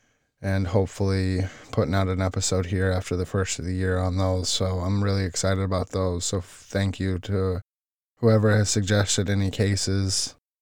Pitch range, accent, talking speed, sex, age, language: 95-110 Hz, American, 170 wpm, male, 20-39, English